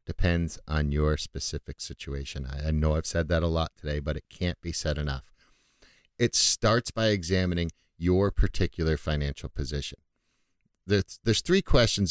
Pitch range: 80-105 Hz